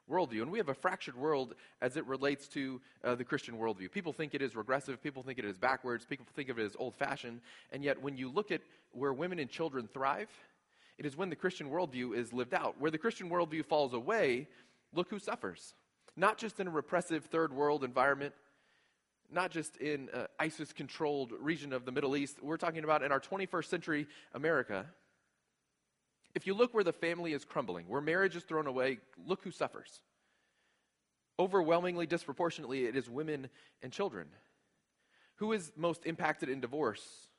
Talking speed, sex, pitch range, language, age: 185 wpm, male, 135-170 Hz, English, 30-49